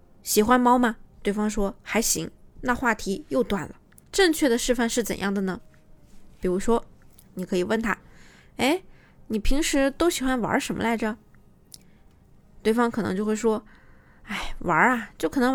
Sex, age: female, 20-39